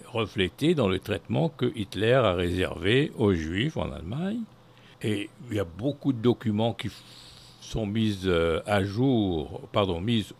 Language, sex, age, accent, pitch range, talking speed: English, male, 60-79, French, 105-155 Hz, 150 wpm